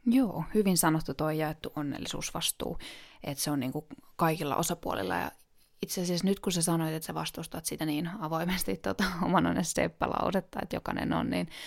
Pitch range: 155-185 Hz